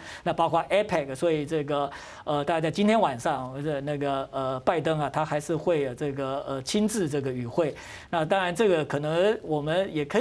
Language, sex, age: Chinese, male, 50-69